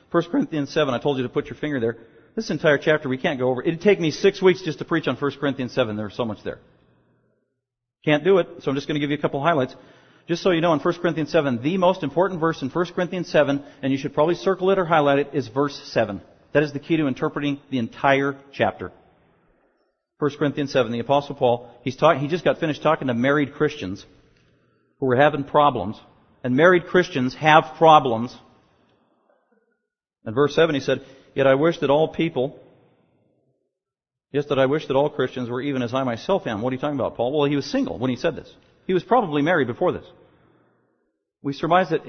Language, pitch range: English, 130-160 Hz